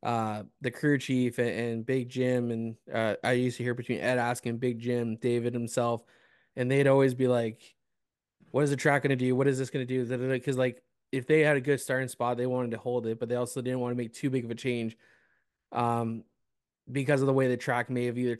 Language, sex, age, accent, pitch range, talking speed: English, male, 20-39, American, 120-130 Hz, 245 wpm